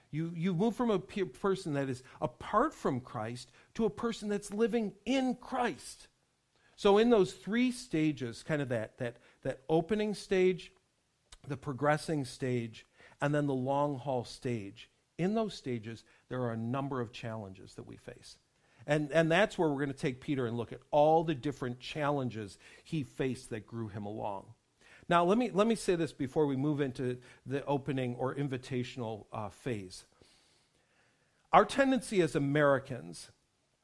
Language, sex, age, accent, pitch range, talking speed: English, male, 50-69, American, 120-165 Hz, 165 wpm